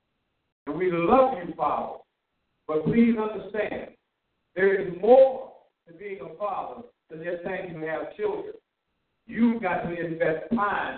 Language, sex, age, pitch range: English, male, 50-69, 155-210 Hz